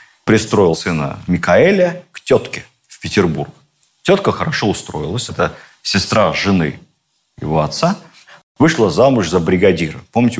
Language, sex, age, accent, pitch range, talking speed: Russian, male, 40-59, native, 90-135 Hz, 115 wpm